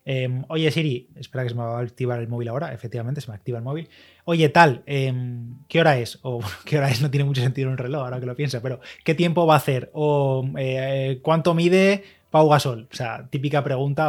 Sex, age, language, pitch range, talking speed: male, 20-39, Spanish, 125-150 Hz, 245 wpm